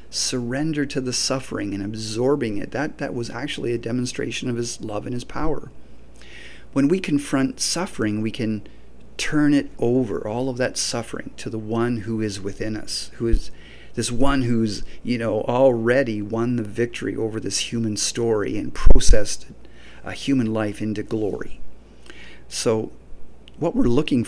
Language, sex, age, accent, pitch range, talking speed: English, male, 40-59, American, 105-125 Hz, 160 wpm